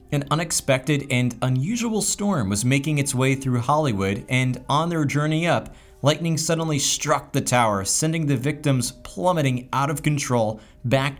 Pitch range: 110-145 Hz